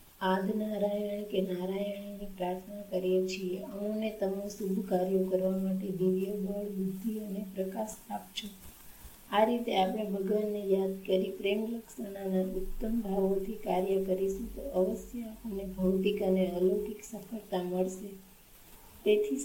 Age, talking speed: 20-39, 35 wpm